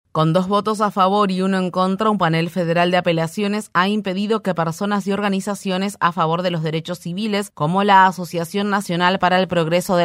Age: 30-49